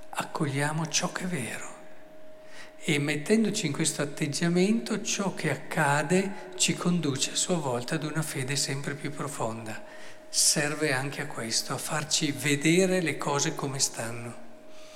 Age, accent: 50-69, native